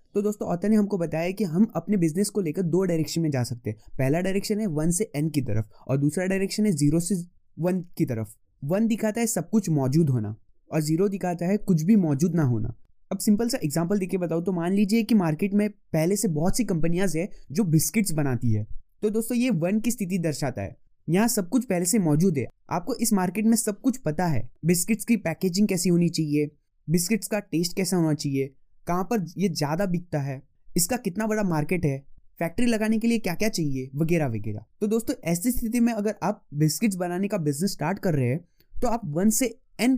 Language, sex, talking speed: Hindi, male, 220 wpm